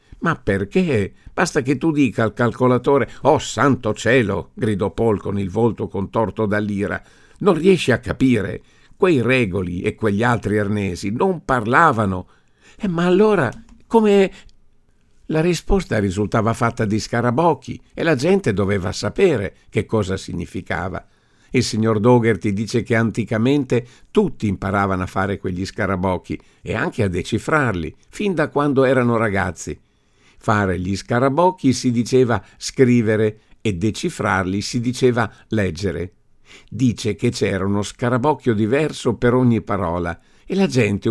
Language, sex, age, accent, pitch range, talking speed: Italian, male, 50-69, native, 100-130 Hz, 135 wpm